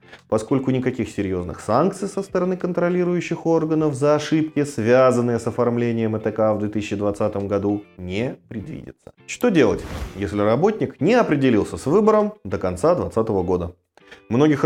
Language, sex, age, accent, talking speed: Russian, male, 30-49, native, 130 wpm